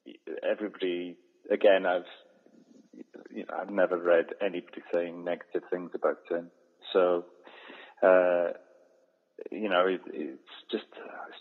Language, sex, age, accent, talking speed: English, male, 40-59, British, 115 wpm